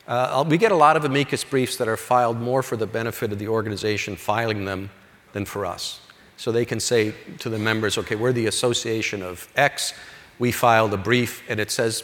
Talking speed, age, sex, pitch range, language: 215 wpm, 50-69, male, 105-125 Hz, English